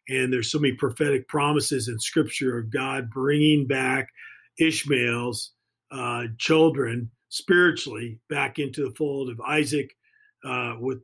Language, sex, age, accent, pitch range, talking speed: English, male, 40-59, American, 130-155 Hz, 130 wpm